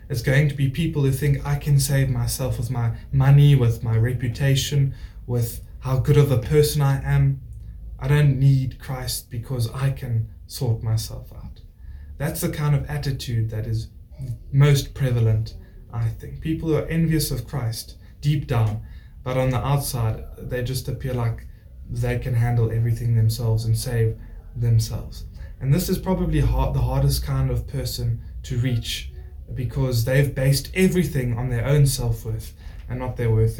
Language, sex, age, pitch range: English, male, 20-39, 110-145 Hz